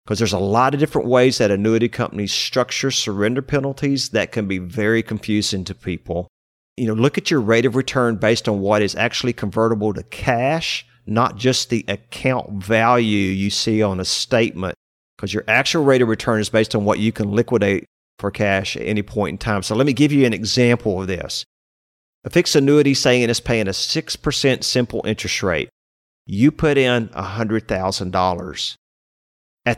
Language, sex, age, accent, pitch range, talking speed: English, male, 40-59, American, 105-140 Hz, 185 wpm